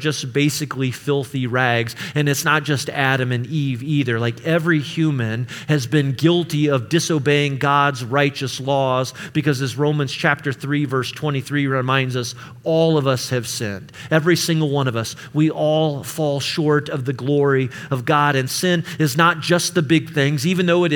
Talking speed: 180 wpm